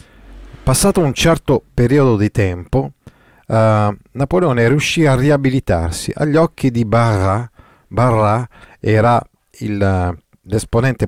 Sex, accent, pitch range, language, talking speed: male, native, 95-120 Hz, Italian, 105 wpm